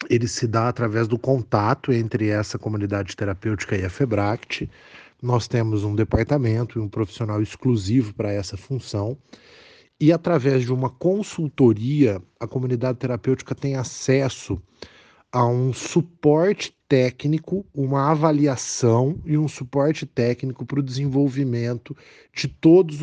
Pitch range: 120-155 Hz